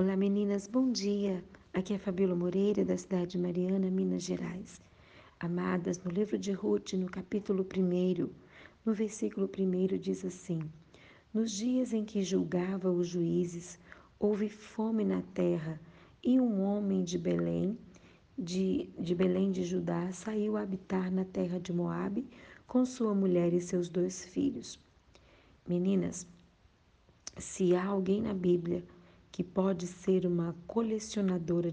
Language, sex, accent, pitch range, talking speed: Portuguese, female, Brazilian, 175-200 Hz, 140 wpm